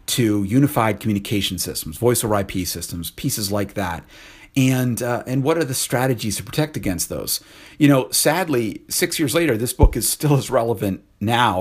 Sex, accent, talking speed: male, American, 180 wpm